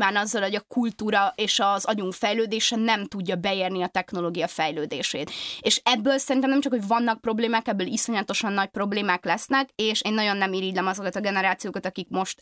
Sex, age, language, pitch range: female, 20-39, Hungarian, 185-225 Hz